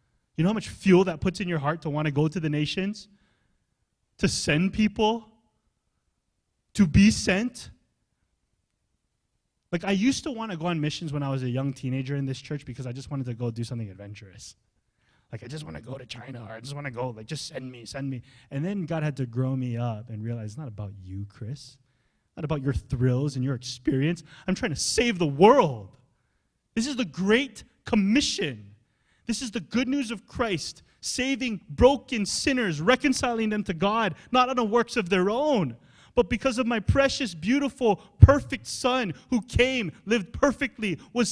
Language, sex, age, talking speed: English, male, 20-39, 195 wpm